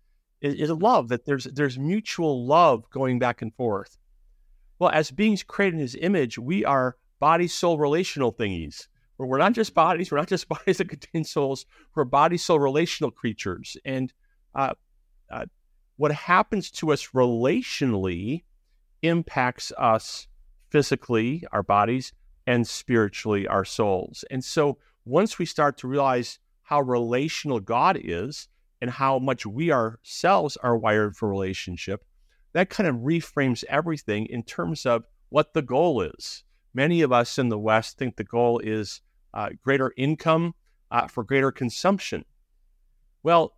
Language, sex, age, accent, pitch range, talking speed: English, male, 50-69, American, 115-150 Hz, 145 wpm